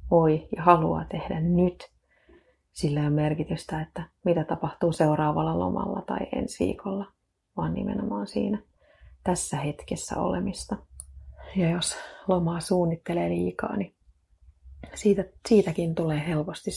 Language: Finnish